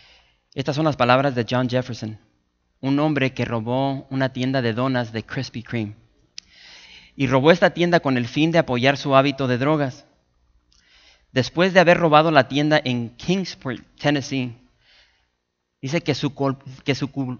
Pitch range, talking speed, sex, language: 115-145 Hz, 160 wpm, male, English